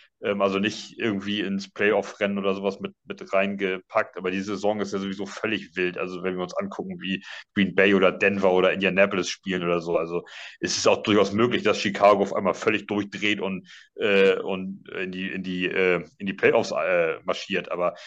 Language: German